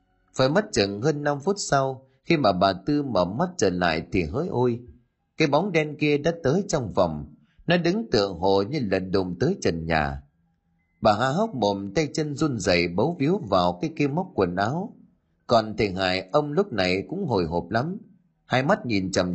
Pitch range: 90-145 Hz